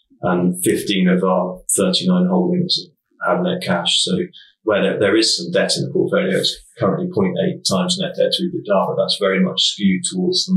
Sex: male